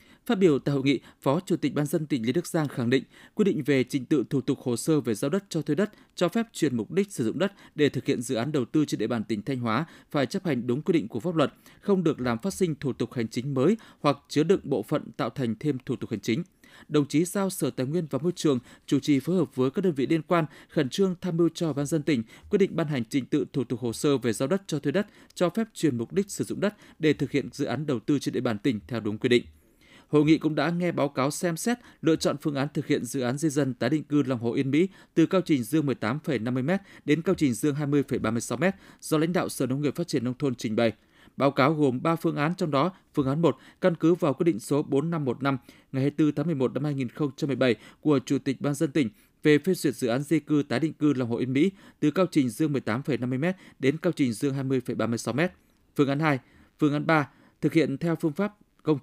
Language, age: Vietnamese, 20-39